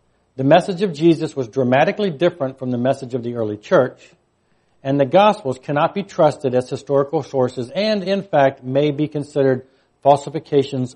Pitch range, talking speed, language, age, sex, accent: 130-175 Hz, 165 wpm, English, 60-79, male, American